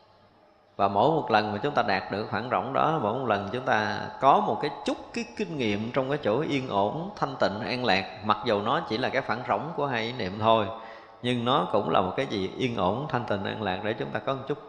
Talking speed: 265 wpm